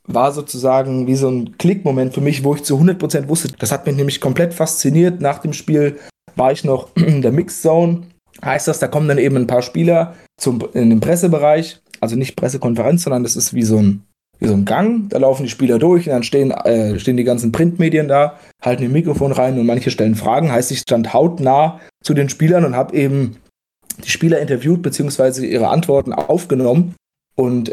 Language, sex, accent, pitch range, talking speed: German, male, German, 120-155 Hz, 205 wpm